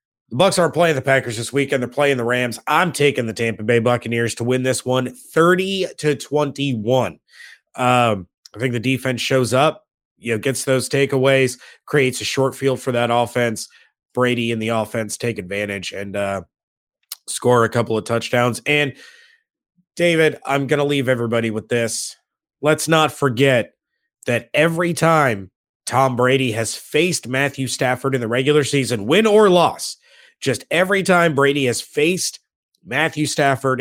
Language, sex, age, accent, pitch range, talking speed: English, male, 30-49, American, 120-145 Hz, 165 wpm